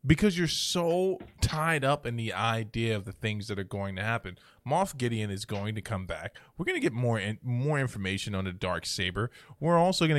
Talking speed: 220 wpm